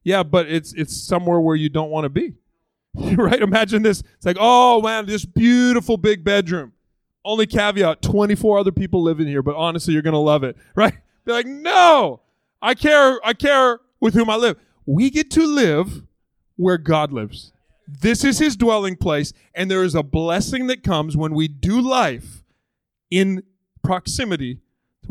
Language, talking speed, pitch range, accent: English, 180 wpm, 165-235 Hz, American